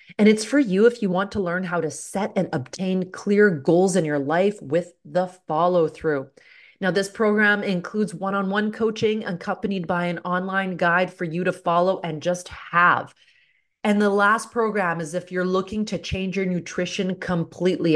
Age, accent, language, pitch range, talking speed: 30-49, American, English, 165-195 Hz, 185 wpm